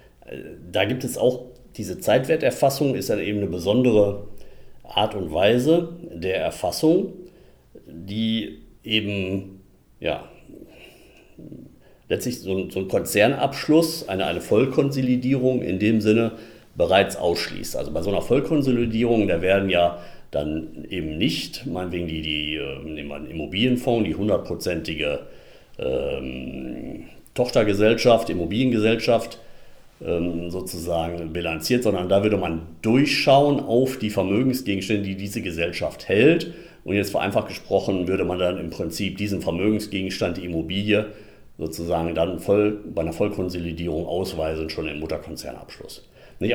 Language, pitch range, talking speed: German, 85-120 Hz, 120 wpm